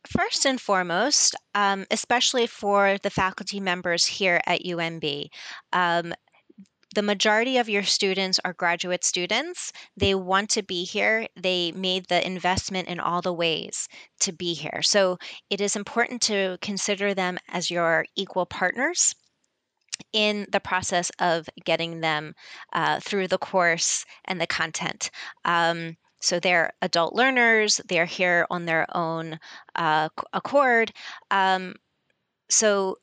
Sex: female